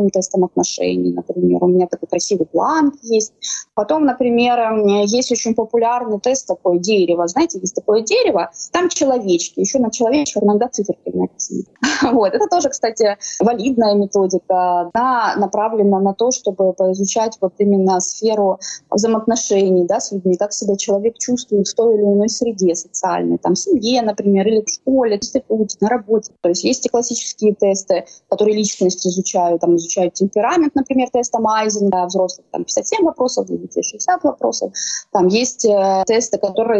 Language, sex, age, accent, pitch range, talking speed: Russian, female, 20-39, native, 185-230 Hz, 155 wpm